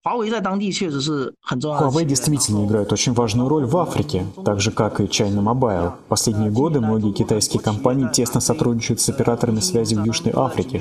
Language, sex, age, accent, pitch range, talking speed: Russian, male, 20-39, native, 110-140 Hz, 155 wpm